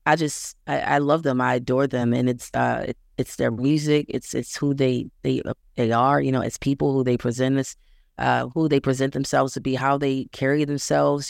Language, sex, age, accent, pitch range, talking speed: English, female, 30-49, American, 125-145 Hz, 230 wpm